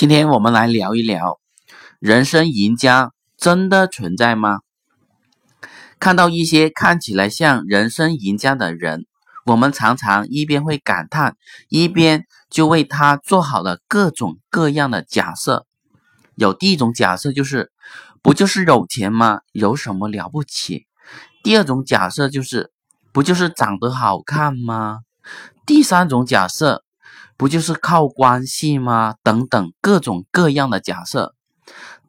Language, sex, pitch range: Chinese, male, 115-170 Hz